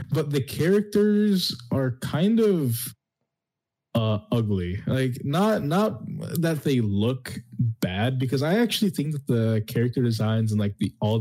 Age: 20-39